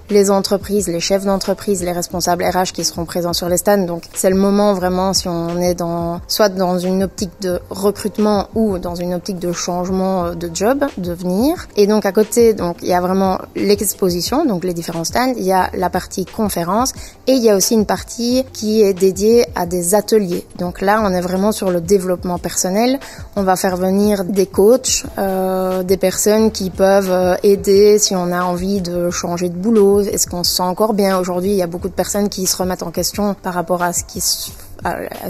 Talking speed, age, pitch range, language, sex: 210 wpm, 20-39, 180-205 Hz, French, female